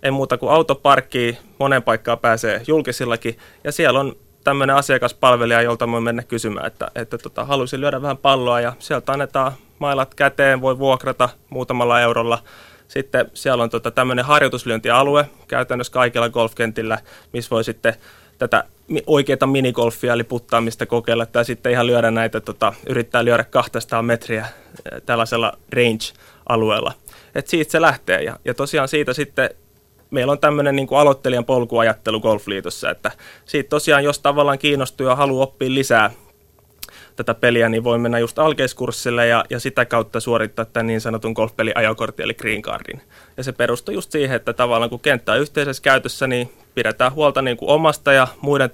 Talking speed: 160 wpm